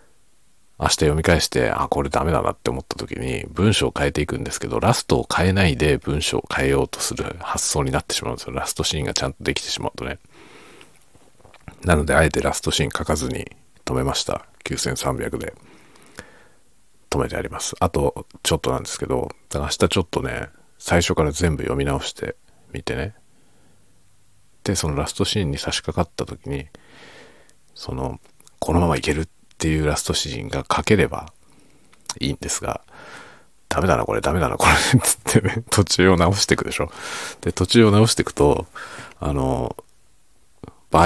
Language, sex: Japanese, male